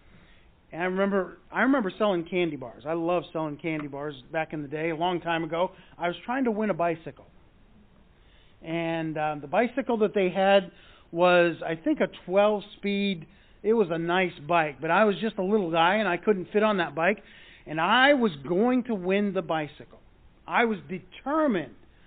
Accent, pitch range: American, 170-220 Hz